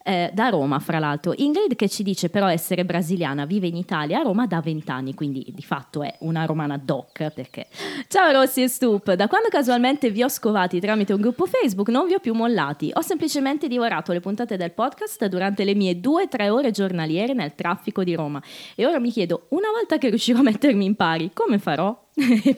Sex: female